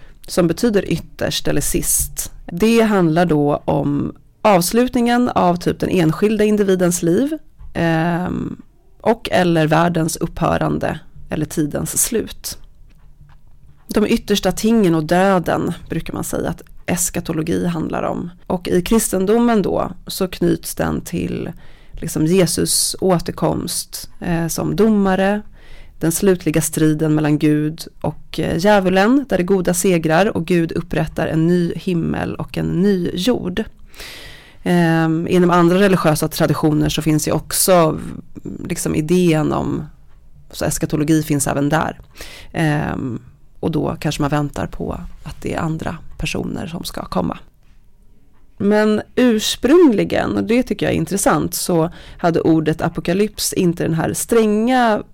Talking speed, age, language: 130 wpm, 30-49, Swedish